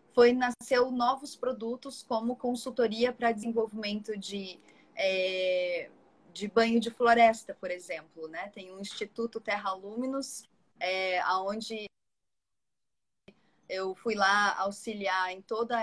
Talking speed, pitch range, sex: 115 wpm, 195-240 Hz, female